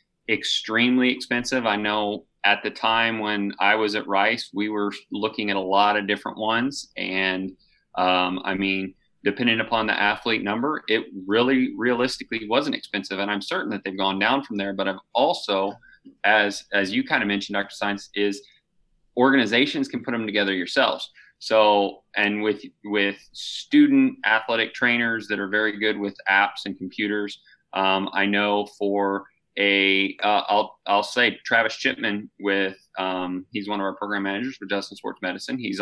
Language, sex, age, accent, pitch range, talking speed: English, male, 30-49, American, 100-110 Hz, 170 wpm